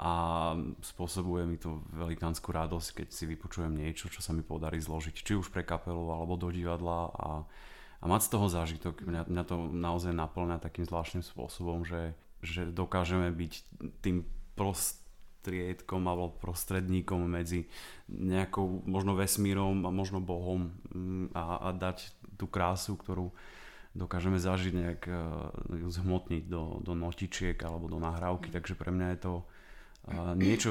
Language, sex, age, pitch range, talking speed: Slovak, male, 30-49, 85-95 Hz, 140 wpm